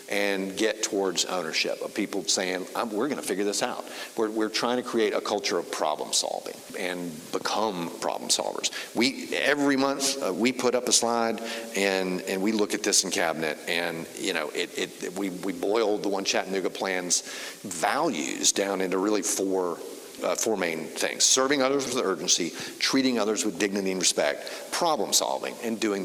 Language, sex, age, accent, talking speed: English, male, 50-69, American, 185 wpm